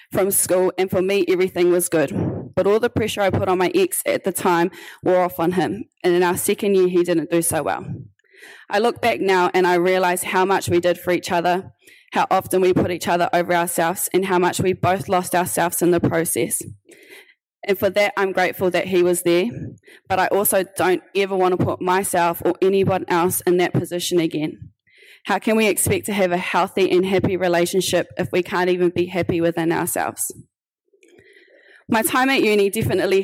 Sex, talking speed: female, 210 wpm